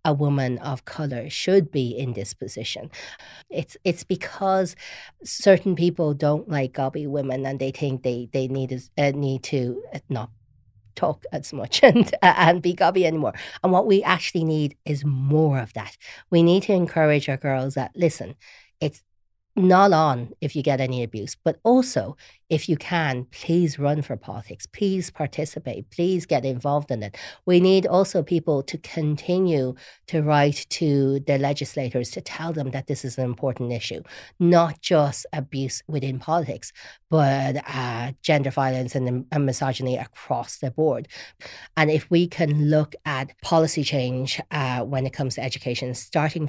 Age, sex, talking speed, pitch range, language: 40-59, female, 165 wpm, 130-160 Hz, English